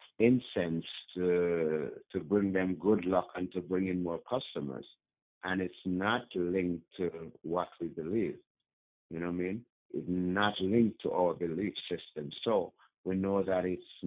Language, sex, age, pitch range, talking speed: English, male, 60-79, 85-100 Hz, 160 wpm